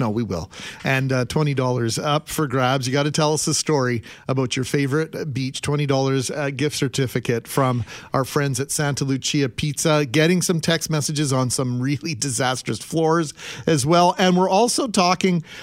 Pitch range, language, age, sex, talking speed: 135-165 Hz, English, 40-59, male, 185 wpm